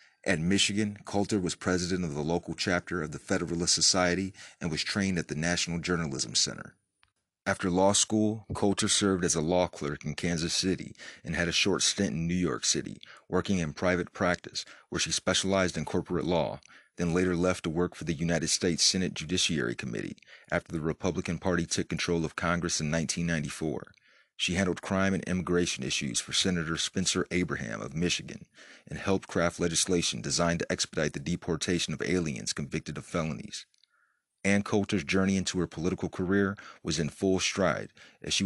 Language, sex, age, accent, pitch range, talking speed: English, male, 30-49, American, 85-95 Hz, 175 wpm